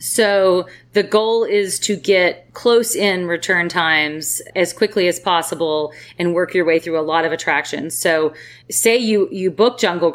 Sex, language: female, English